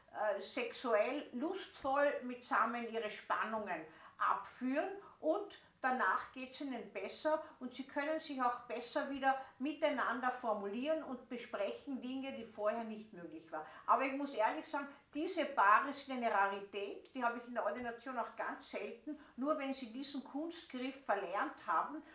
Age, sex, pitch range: 50-69, female, 215-280 Hz